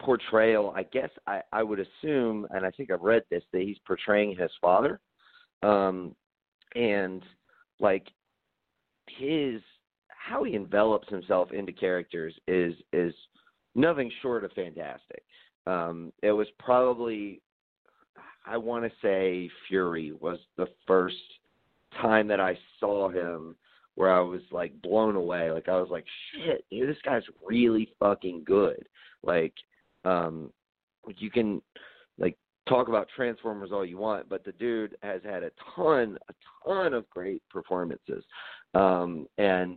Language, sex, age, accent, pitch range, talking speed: English, male, 40-59, American, 90-110 Hz, 140 wpm